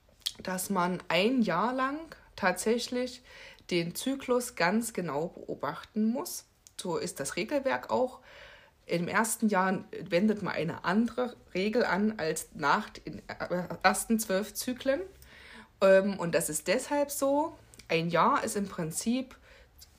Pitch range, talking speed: 180-245 Hz, 125 wpm